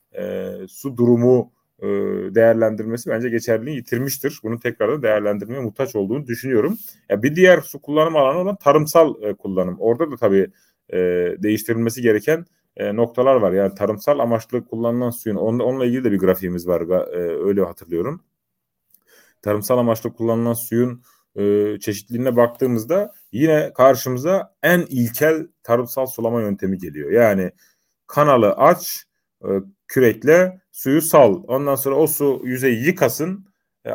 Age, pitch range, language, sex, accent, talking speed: 30-49, 115-155 Hz, Turkish, male, native, 135 wpm